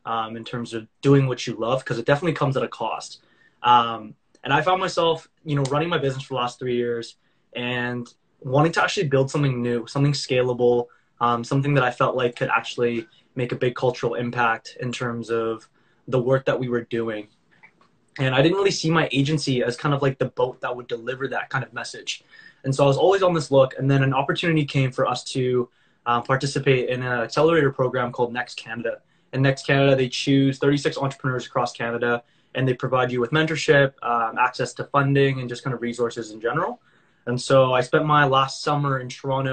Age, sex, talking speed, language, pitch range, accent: 20-39, male, 215 wpm, English, 120-140 Hz, American